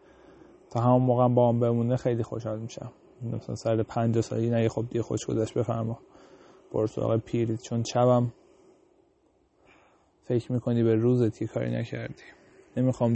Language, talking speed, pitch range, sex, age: Persian, 130 wpm, 115-120 Hz, male, 20-39